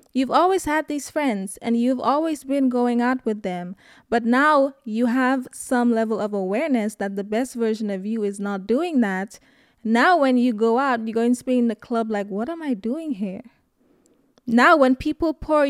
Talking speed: 205 wpm